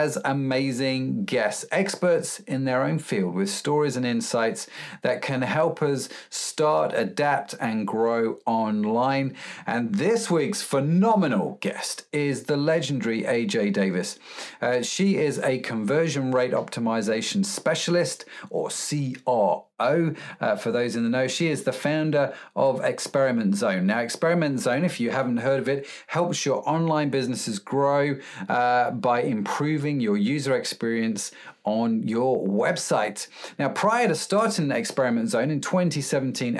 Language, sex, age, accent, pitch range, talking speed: English, male, 40-59, British, 125-160 Hz, 140 wpm